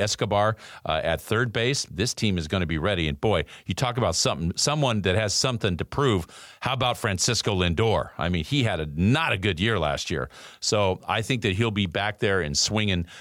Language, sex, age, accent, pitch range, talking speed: English, male, 50-69, American, 100-130 Hz, 225 wpm